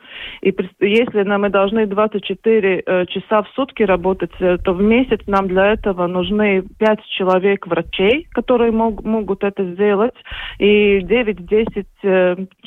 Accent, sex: native, female